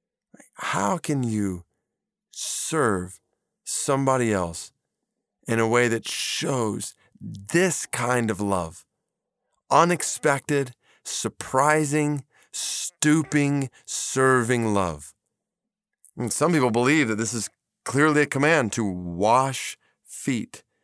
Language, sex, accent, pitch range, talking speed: English, male, American, 100-140 Hz, 90 wpm